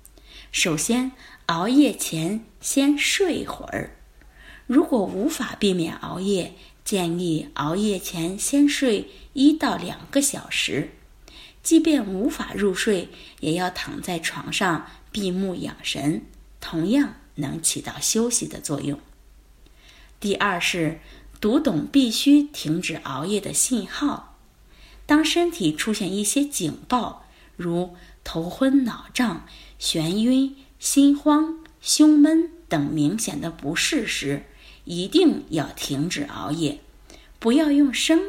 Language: Chinese